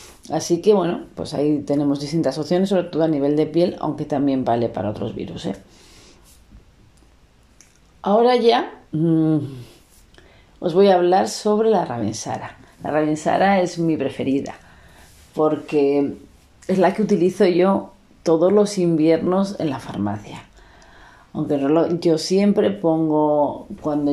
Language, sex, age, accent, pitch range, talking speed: Spanish, female, 40-59, Spanish, 140-180 Hz, 125 wpm